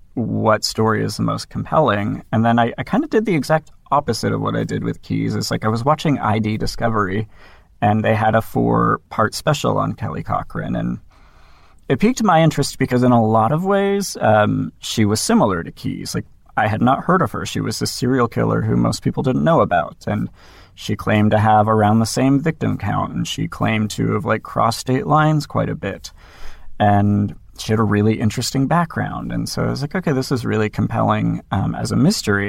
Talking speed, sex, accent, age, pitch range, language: 215 wpm, male, American, 30-49, 105-130 Hz, English